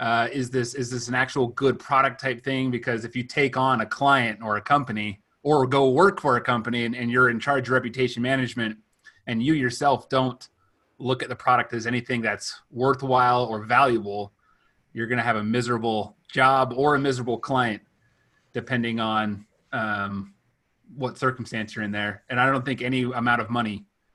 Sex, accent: male, American